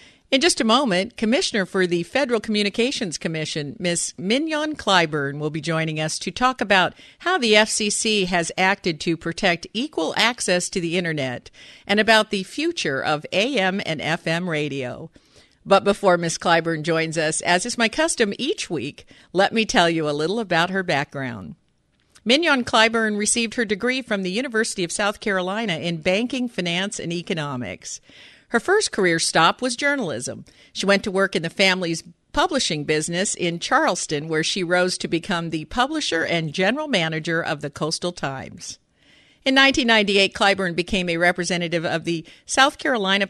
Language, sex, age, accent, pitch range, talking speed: English, female, 50-69, American, 160-220 Hz, 165 wpm